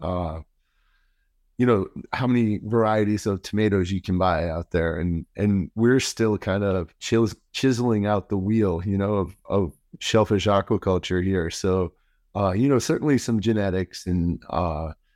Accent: American